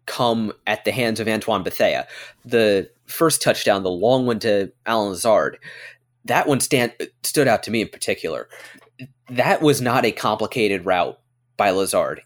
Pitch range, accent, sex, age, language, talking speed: 110-125 Hz, American, male, 30-49, English, 160 wpm